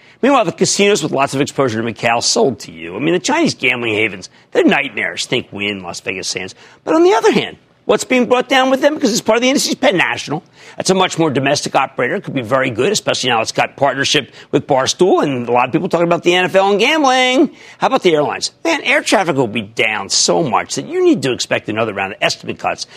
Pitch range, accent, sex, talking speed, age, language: 125-205 Hz, American, male, 250 wpm, 50-69, English